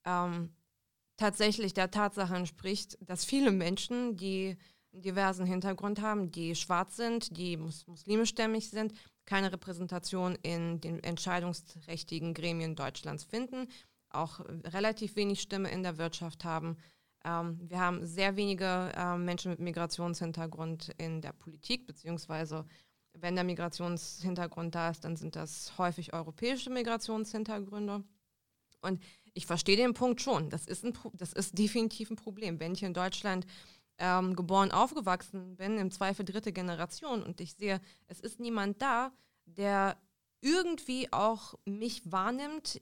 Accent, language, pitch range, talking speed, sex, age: German, German, 170-215 Hz, 135 wpm, female, 20-39